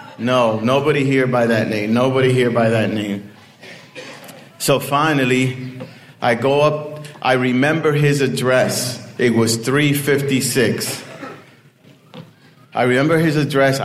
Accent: American